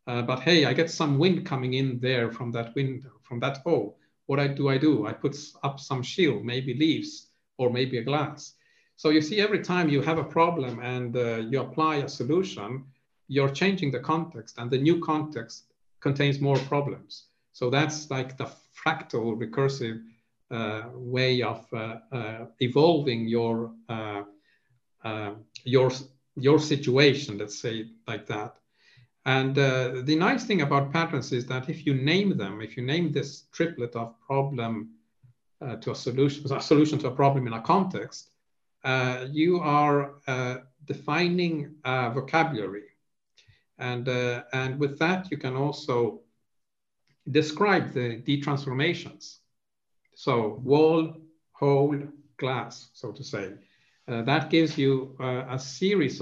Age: 50-69